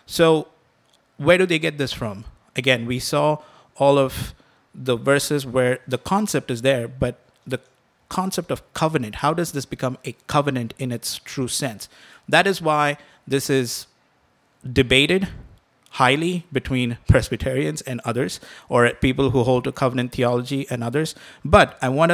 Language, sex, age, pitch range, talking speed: English, male, 50-69, 125-145 Hz, 155 wpm